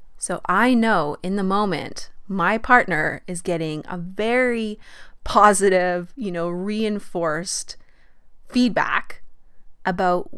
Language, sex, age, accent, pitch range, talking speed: English, female, 20-39, American, 165-200 Hz, 105 wpm